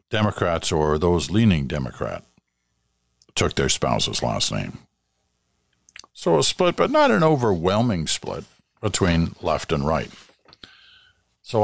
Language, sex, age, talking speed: English, male, 50-69, 120 wpm